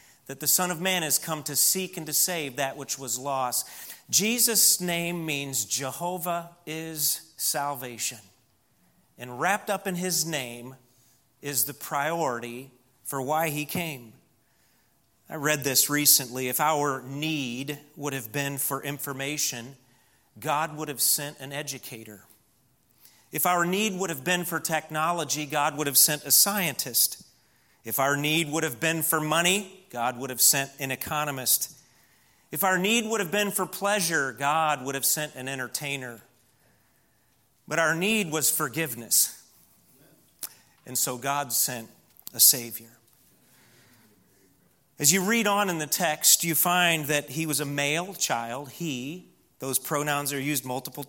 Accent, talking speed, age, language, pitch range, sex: American, 150 wpm, 40-59, English, 130-165 Hz, male